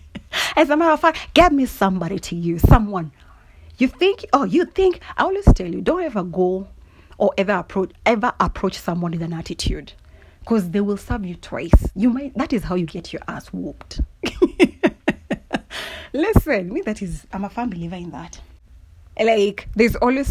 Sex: female